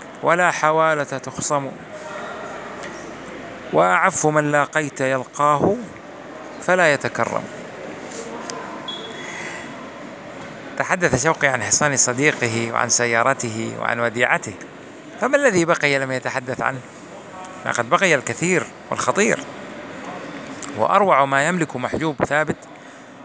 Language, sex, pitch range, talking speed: Persian, male, 130-170 Hz, 90 wpm